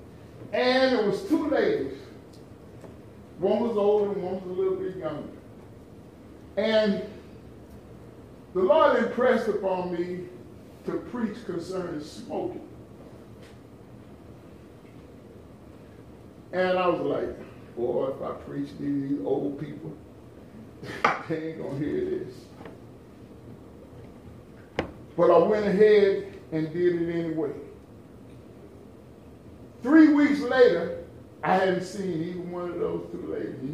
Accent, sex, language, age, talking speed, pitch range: American, male, English, 40-59, 105 wpm, 175-250 Hz